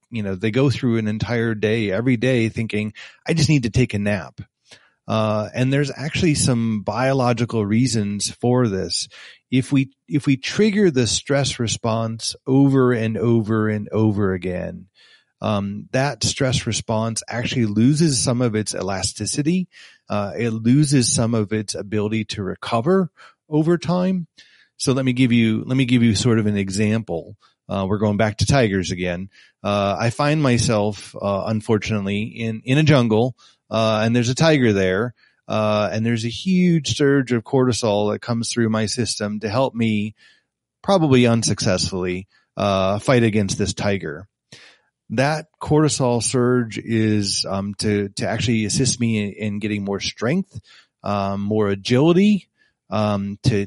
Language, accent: English, American